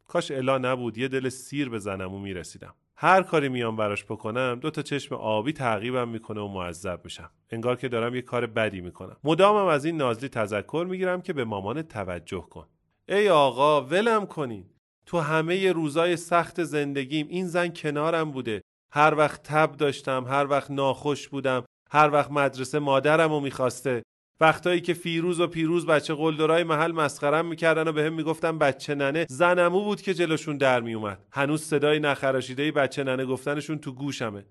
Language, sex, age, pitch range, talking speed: Persian, male, 30-49, 120-155 Hz, 175 wpm